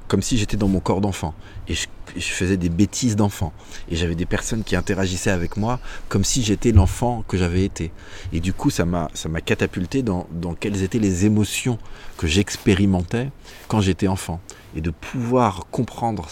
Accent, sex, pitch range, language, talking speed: French, male, 85-105 Hz, French, 190 wpm